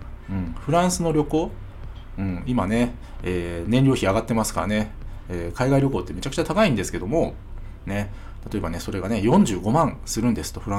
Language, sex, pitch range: Japanese, male, 95-150 Hz